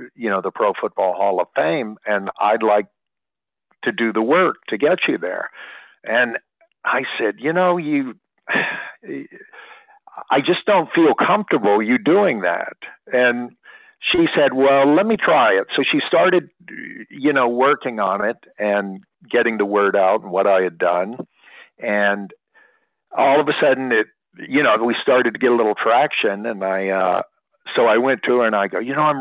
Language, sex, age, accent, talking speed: English, male, 50-69, American, 180 wpm